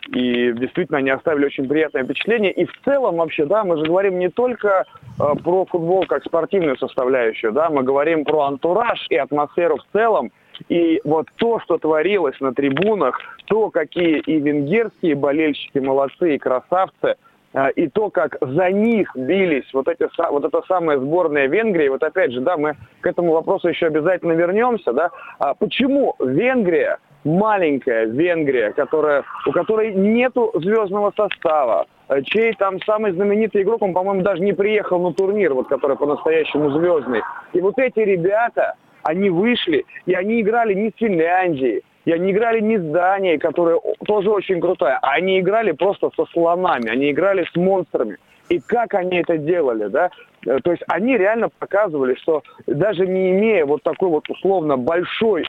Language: Russian